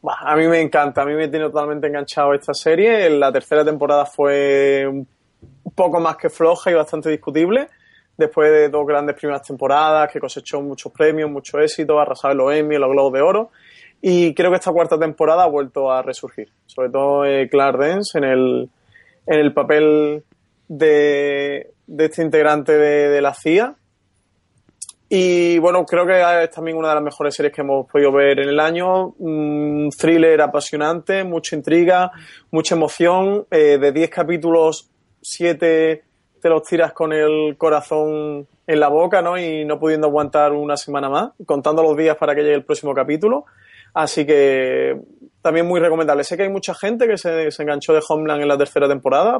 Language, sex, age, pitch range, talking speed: Spanish, male, 20-39, 145-165 Hz, 180 wpm